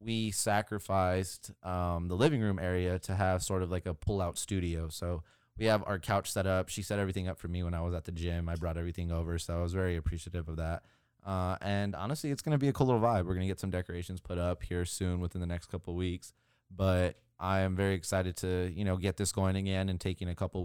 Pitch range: 90-105 Hz